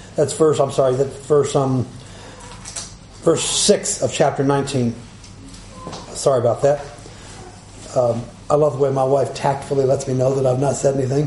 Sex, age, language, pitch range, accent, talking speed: male, 50-69, English, 125-165 Hz, American, 165 wpm